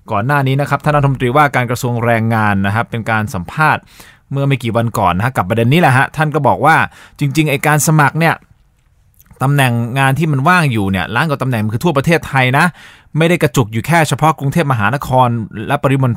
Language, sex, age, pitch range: Thai, male, 20-39, 120-160 Hz